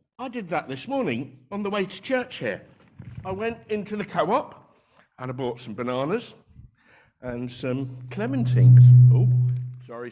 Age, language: 50-69, English